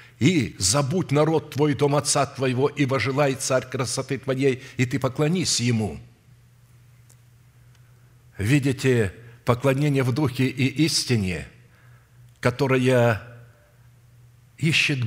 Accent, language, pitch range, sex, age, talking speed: native, Russian, 120-150 Hz, male, 50-69, 95 wpm